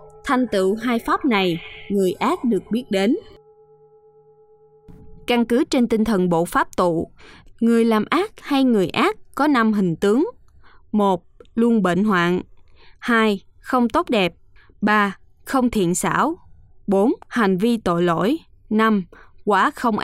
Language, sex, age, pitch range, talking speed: Vietnamese, female, 20-39, 190-260 Hz, 145 wpm